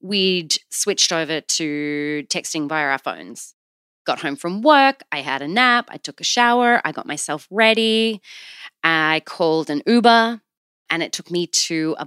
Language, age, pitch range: English, 20-39, 155-225 Hz